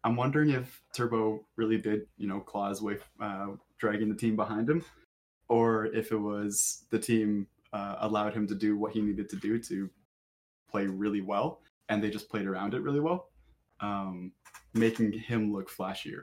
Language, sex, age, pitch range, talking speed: English, male, 20-39, 100-110 Hz, 180 wpm